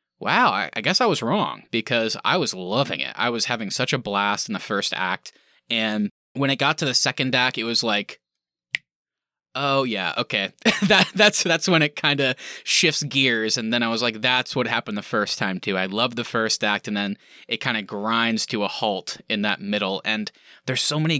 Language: English